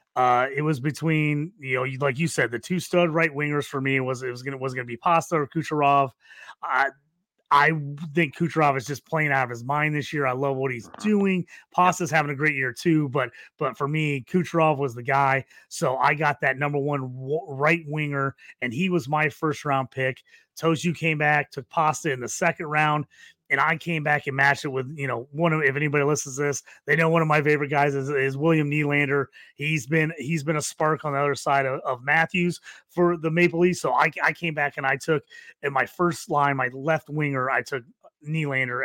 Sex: male